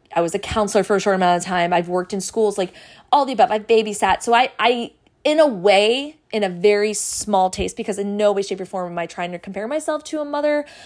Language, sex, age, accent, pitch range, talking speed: English, female, 20-39, American, 180-220 Hz, 260 wpm